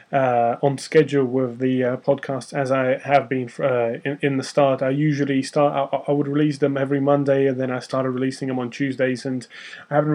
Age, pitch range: 20-39, 130-145 Hz